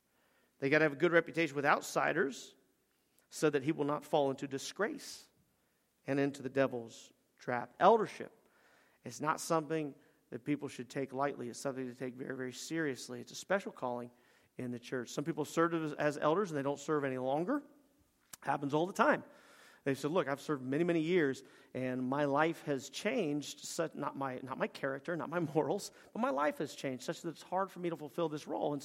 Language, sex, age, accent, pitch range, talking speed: English, male, 40-59, American, 130-160 Hz, 205 wpm